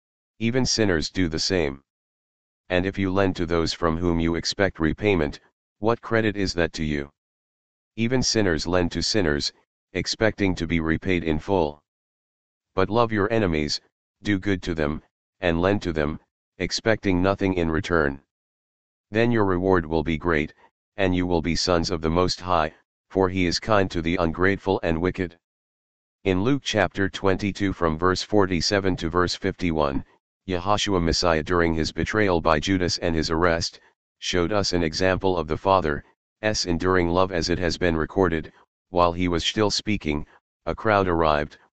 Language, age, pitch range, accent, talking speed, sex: English, 40-59, 80-95 Hz, American, 165 wpm, male